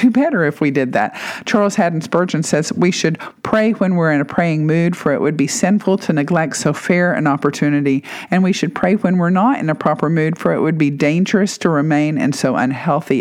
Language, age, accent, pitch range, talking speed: English, 50-69, American, 155-215 Hz, 225 wpm